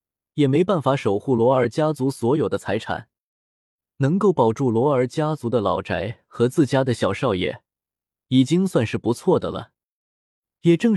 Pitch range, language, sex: 105-155 Hz, Chinese, male